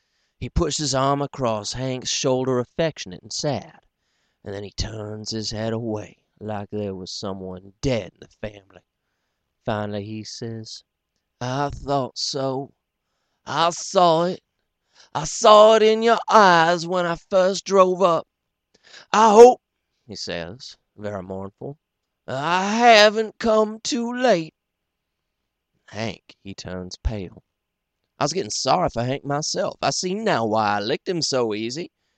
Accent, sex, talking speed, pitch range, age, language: American, male, 140 wpm, 105-160 Hz, 30-49, English